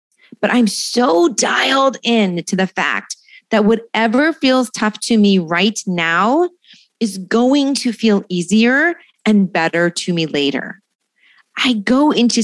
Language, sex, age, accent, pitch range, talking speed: English, female, 30-49, American, 180-240 Hz, 140 wpm